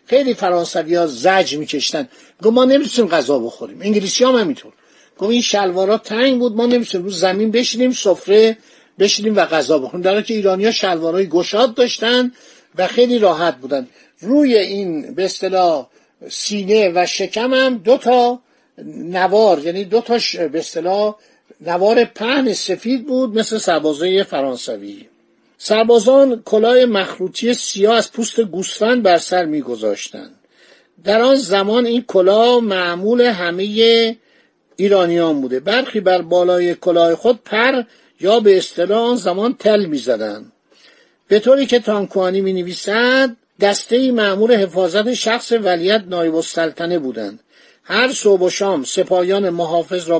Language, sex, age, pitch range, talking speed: Persian, male, 50-69, 180-235 Hz, 130 wpm